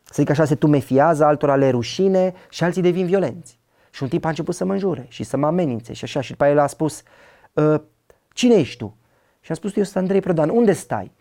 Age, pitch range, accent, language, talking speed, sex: 30-49, 130-175 Hz, native, Romanian, 230 wpm, male